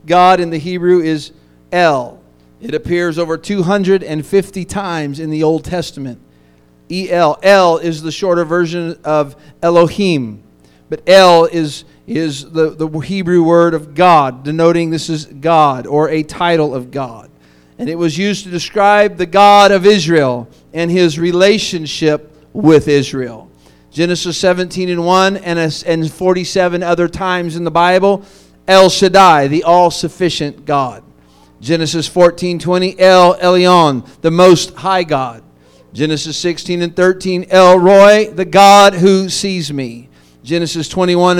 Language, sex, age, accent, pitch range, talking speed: English, male, 40-59, American, 155-185 Hz, 140 wpm